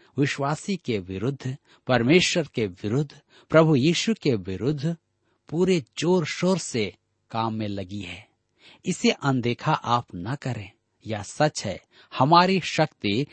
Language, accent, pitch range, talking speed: Hindi, native, 110-160 Hz, 125 wpm